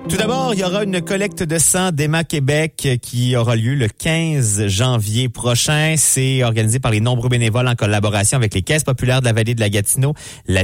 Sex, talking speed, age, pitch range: male, 210 wpm, 30-49, 105-140 Hz